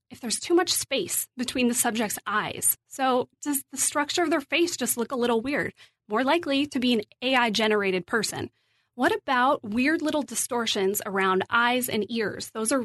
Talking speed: 180 wpm